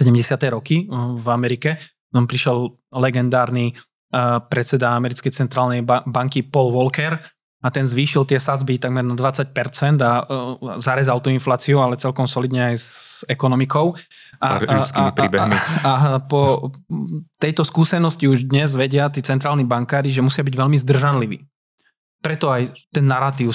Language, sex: Slovak, male